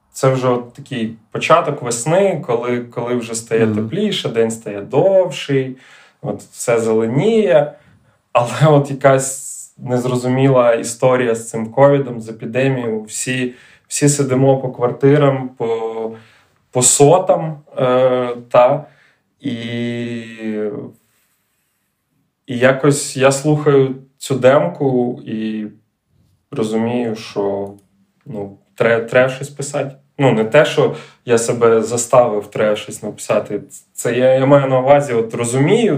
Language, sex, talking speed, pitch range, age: Ukrainian, male, 115 wpm, 115-145 Hz, 20-39